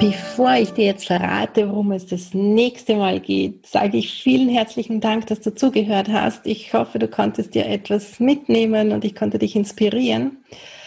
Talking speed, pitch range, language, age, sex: 175 wpm, 195-230 Hz, German, 40-59, female